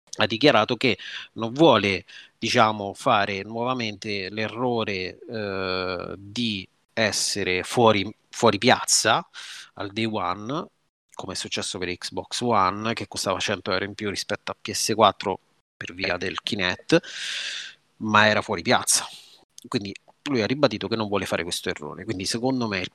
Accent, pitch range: native, 100-115 Hz